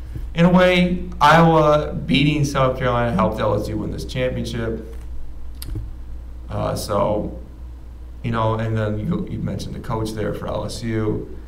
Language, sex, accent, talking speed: English, male, American, 135 wpm